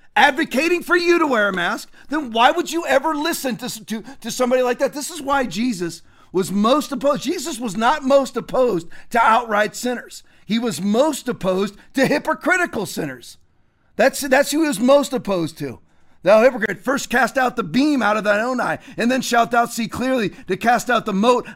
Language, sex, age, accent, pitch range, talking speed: English, male, 40-59, American, 200-265 Hz, 200 wpm